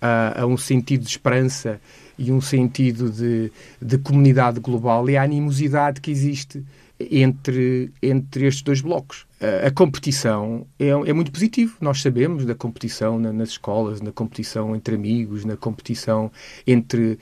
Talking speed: 150 wpm